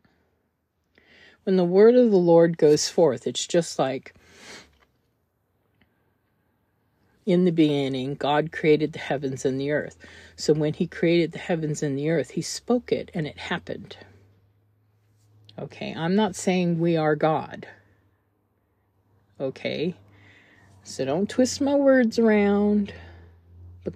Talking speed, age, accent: 130 wpm, 50-69, American